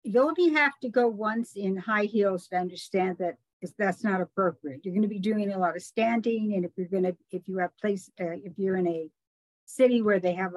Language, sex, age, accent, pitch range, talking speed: English, female, 50-69, American, 185-220 Hz, 240 wpm